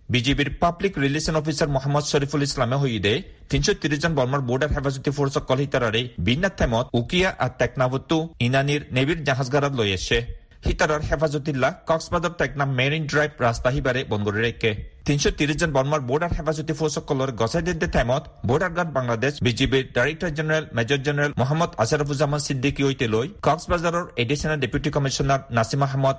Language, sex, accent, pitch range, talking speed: Bengali, male, native, 125-155 Hz, 130 wpm